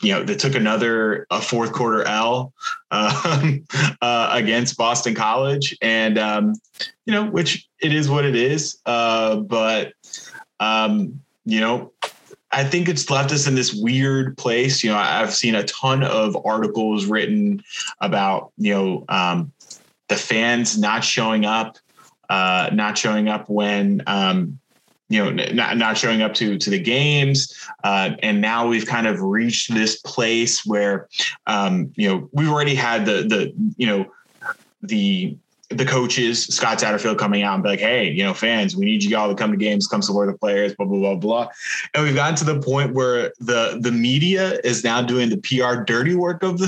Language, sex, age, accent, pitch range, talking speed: English, male, 20-39, American, 110-160 Hz, 180 wpm